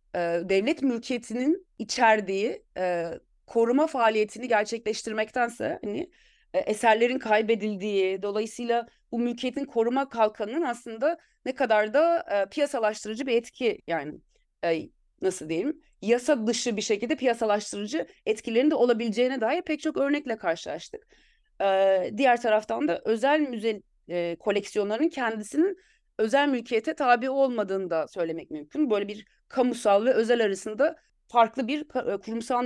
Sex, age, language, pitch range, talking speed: female, 30-49, Turkish, 210-275 Hz, 120 wpm